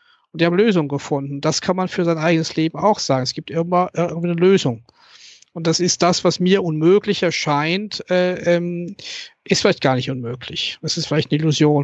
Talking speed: 205 wpm